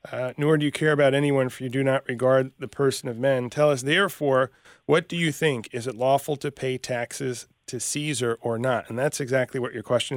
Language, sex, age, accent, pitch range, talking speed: English, male, 30-49, American, 125-150 Hz, 230 wpm